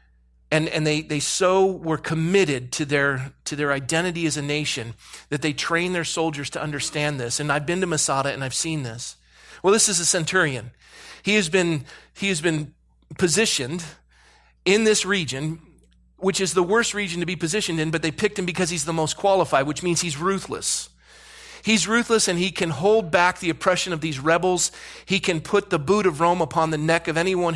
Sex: male